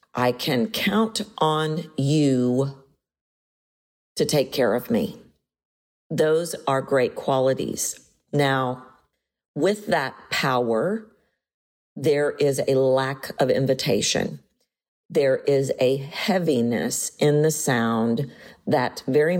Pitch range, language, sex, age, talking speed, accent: 130-190 Hz, English, female, 40-59, 100 wpm, American